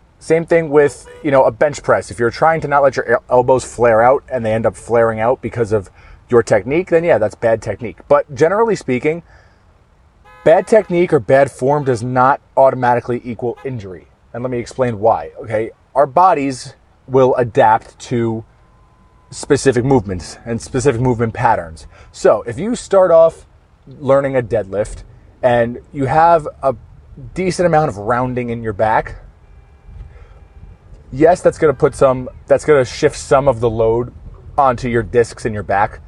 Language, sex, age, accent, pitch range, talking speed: English, male, 30-49, American, 110-135 Hz, 170 wpm